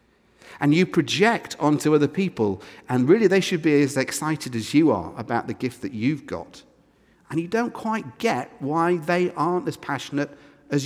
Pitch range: 125-180 Hz